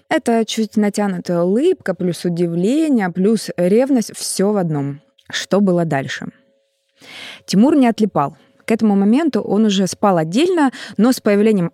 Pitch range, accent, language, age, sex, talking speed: 175-235 Hz, native, Russian, 20-39, female, 140 wpm